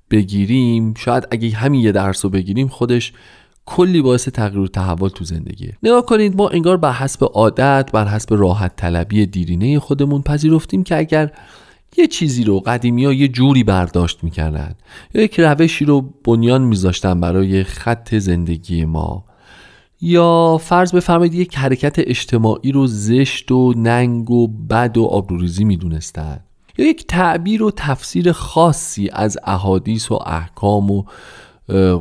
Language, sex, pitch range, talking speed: Persian, male, 95-145 Hz, 140 wpm